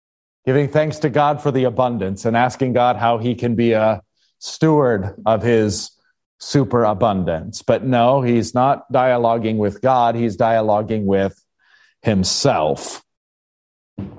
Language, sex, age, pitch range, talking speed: English, male, 40-59, 105-130 Hz, 125 wpm